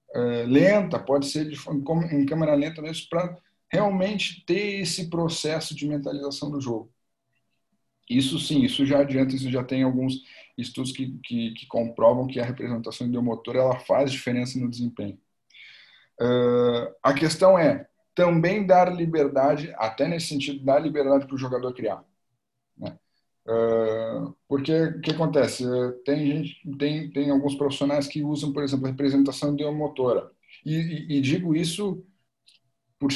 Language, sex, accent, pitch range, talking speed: Portuguese, male, Brazilian, 130-165 Hz, 145 wpm